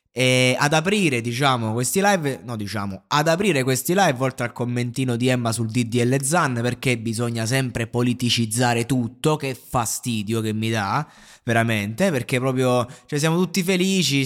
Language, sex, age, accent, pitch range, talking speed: Italian, male, 20-39, native, 125-165 Hz, 155 wpm